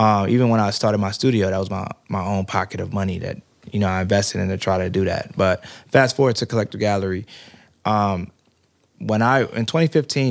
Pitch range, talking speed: 100-115 Hz, 215 wpm